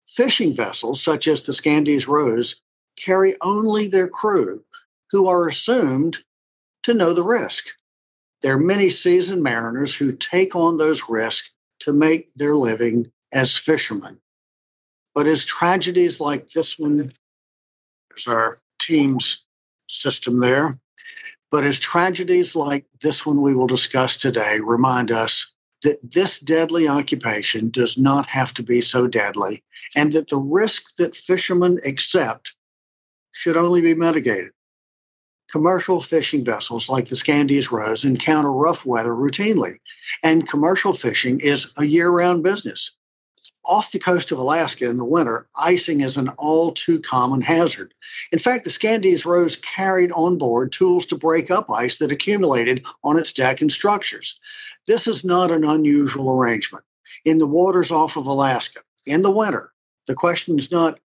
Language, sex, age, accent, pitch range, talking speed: English, male, 60-79, American, 130-180 Hz, 145 wpm